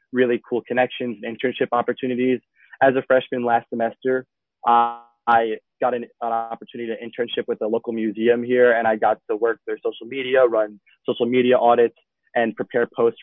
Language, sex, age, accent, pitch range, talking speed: English, male, 20-39, American, 115-130 Hz, 175 wpm